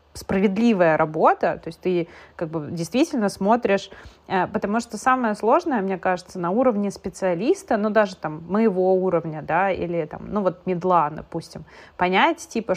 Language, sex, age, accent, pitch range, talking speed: Russian, female, 30-49, native, 180-235 Hz, 150 wpm